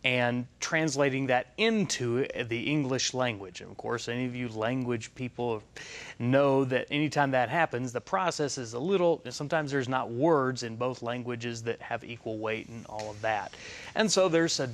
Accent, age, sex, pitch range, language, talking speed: American, 30-49, male, 120-145 Hz, English, 175 wpm